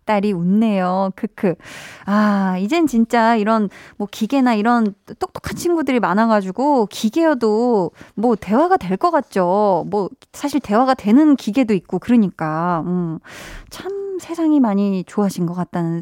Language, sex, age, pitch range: Korean, female, 20-39, 195-275 Hz